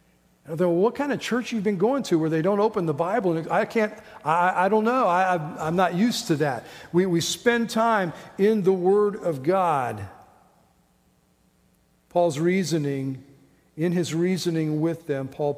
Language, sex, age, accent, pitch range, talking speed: English, male, 50-69, American, 140-175 Hz, 180 wpm